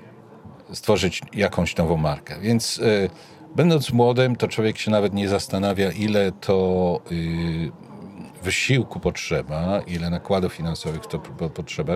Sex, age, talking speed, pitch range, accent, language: male, 50-69, 125 wpm, 90-125 Hz, native, Polish